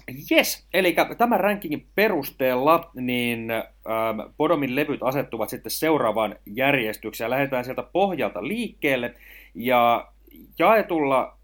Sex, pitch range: male, 125-175 Hz